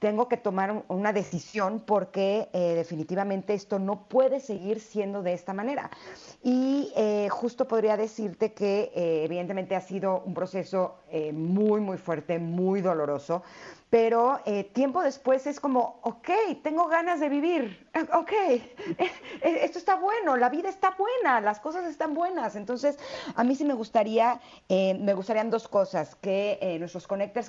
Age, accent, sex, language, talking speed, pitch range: 40-59, Mexican, female, Spanish, 155 wpm, 180-235 Hz